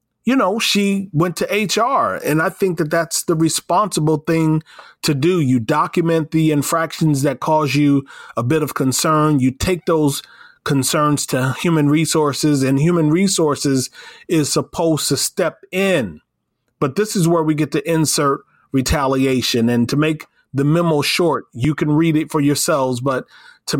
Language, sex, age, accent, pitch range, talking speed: English, male, 30-49, American, 130-160 Hz, 165 wpm